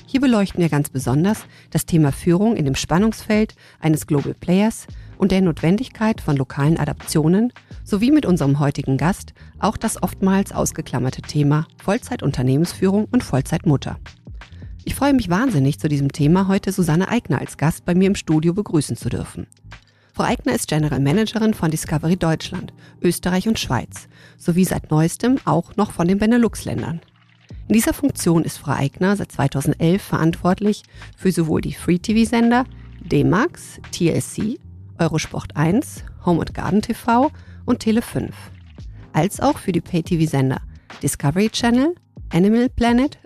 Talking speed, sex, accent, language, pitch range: 140 wpm, female, German, German, 145-210 Hz